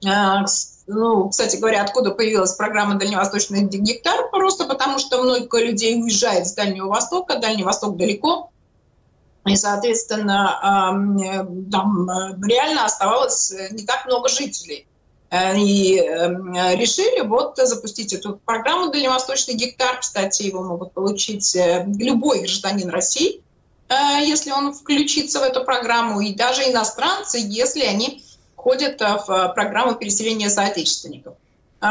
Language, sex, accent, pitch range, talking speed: Ukrainian, female, native, 200-255 Hz, 110 wpm